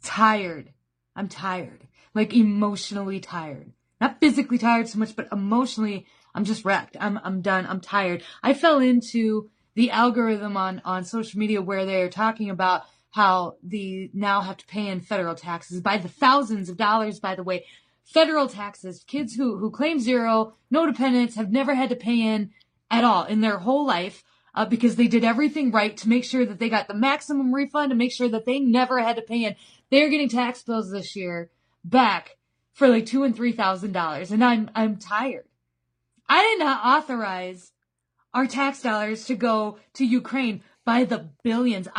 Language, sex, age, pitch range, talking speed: English, female, 30-49, 195-245 Hz, 185 wpm